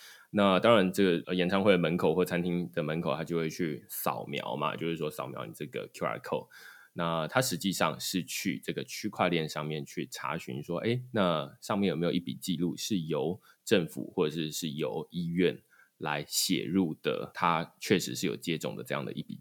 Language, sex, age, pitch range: Chinese, male, 20-39, 80-95 Hz